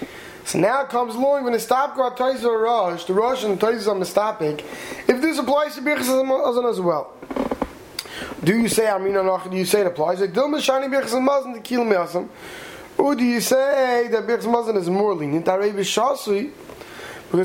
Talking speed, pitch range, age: 160 wpm, 190-245 Hz, 20-39